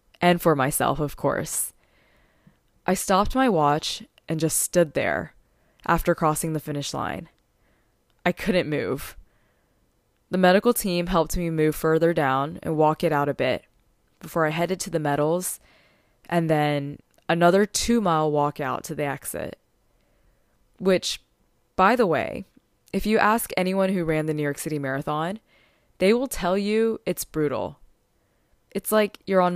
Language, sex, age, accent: English, female, 20-39, American